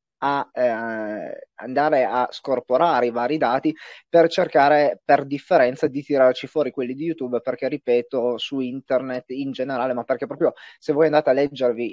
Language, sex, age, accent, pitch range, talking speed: Italian, male, 30-49, native, 125-185 Hz, 160 wpm